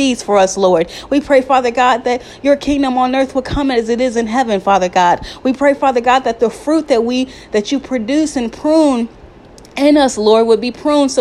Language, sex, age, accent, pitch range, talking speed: English, female, 30-49, American, 210-270 Hz, 230 wpm